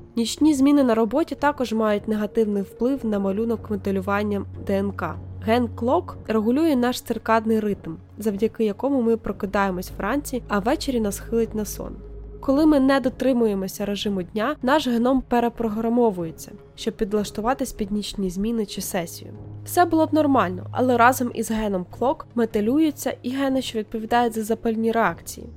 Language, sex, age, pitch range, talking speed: Ukrainian, female, 20-39, 205-260 Hz, 145 wpm